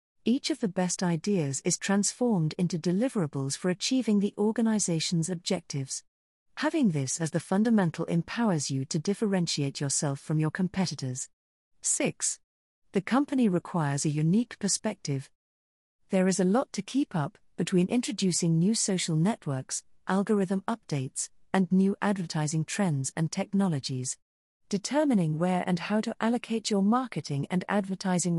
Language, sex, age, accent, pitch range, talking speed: English, female, 40-59, British, 155-210 Hz, 135 wpm